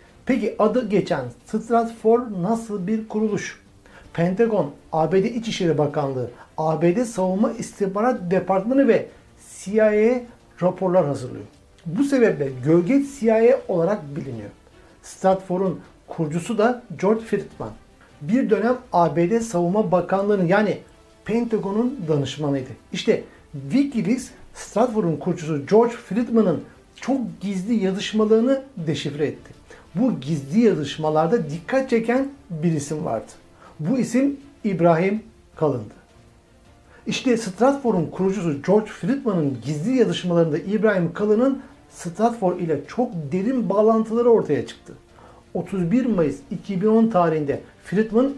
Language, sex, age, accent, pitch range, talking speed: Turkish, male, 60-79, native, 165-230 Hz, 100 wpm